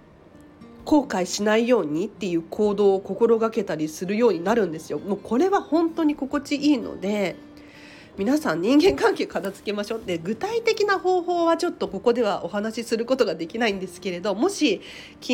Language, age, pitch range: Japanese, 40-59, 195-280 Hz